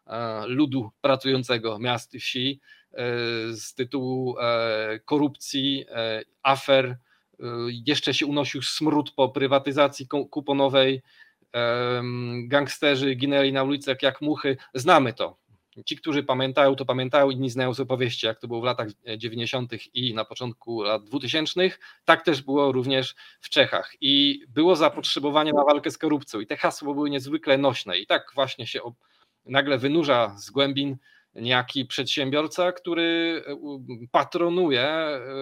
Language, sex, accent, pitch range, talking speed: Polish, male, native, 125-145 Hz, 130 wpm